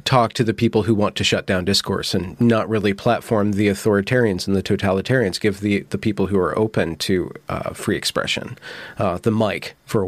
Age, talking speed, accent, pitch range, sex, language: 40-59, 210 wpm, American, 105-130 Hz, male, English